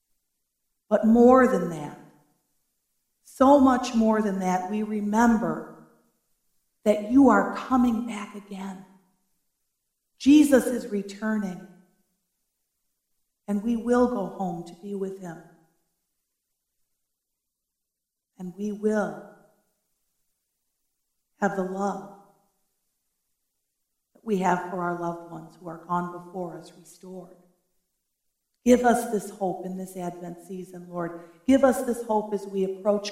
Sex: female